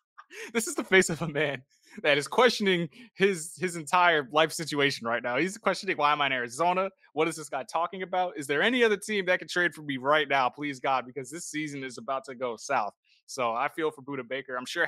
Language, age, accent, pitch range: English, 20-39, American, 125-165 Hz